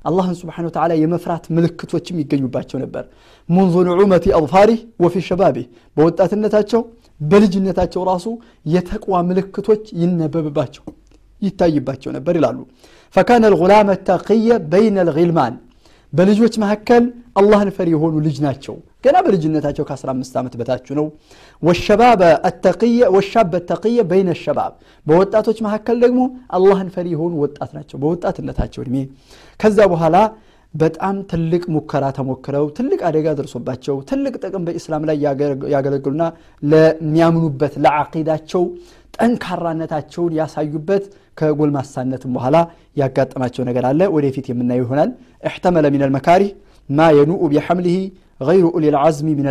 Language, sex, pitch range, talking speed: Amharic, male, 150-195 Hz, 115 wpm